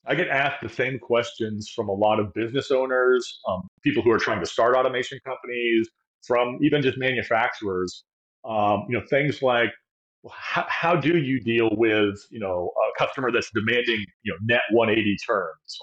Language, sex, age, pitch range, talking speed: English, male, 30-49, 115-150 Hz, 180 wpm